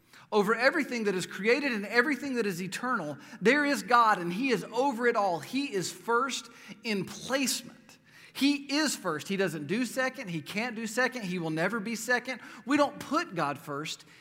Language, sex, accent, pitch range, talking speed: English, male, American, 185-255 Hz, 190 wpm